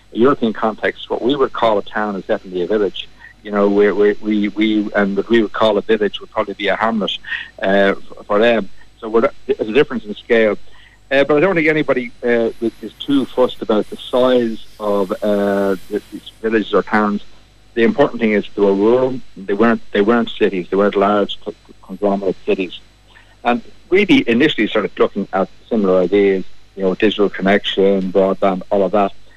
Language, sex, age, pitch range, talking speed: English, male, 60-79, 100-120 Hz, 185 wpm